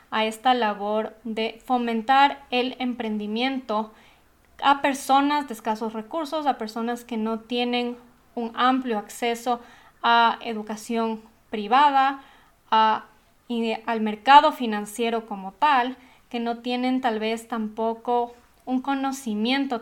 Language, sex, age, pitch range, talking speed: Spanish, female, 20-39, 220-255 Hz, 110 wpm